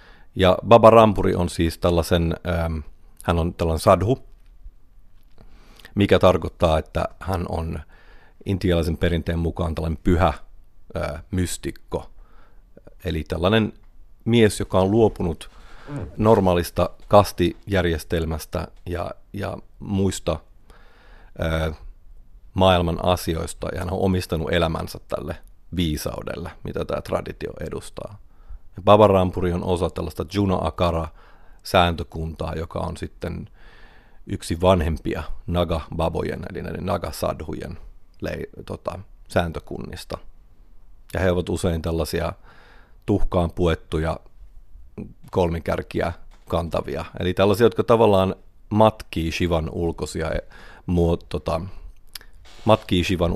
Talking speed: 90 wpm